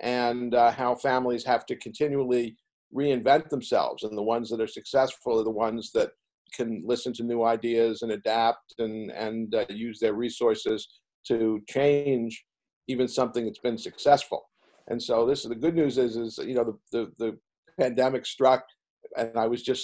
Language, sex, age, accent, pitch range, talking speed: English, male, 50-69, American, 120-145 Hz, 180 wpm